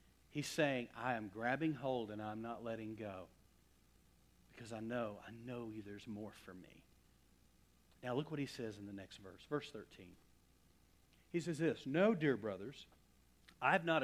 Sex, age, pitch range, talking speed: male, 50-69, 120-180 Hz, 170 wpm